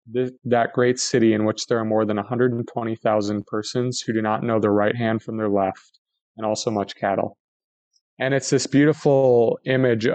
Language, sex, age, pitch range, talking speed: English, male, 30-49, 110-130 Hz, 175 wpm